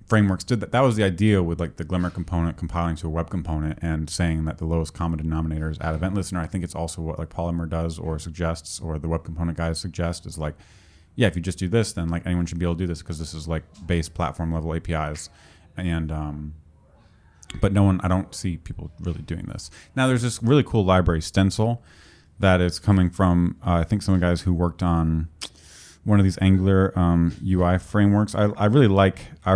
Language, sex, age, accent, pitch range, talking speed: English, male, 30-49, American, 80-95 Hz, 225 wpm